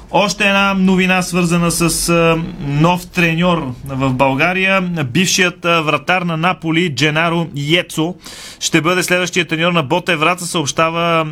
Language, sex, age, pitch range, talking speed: Bulgarian, male, 30-49, 155-175 Hz, 120 wpm